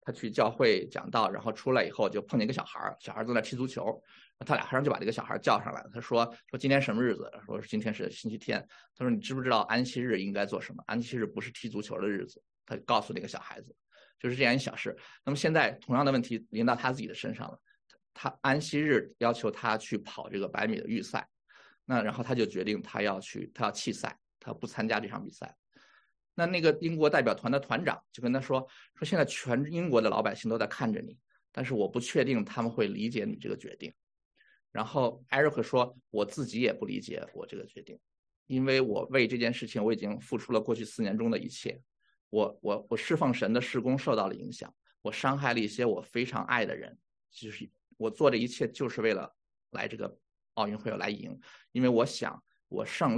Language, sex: Chinese, male